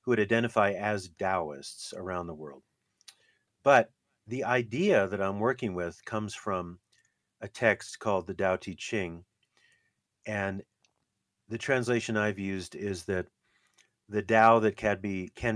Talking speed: 135 wpm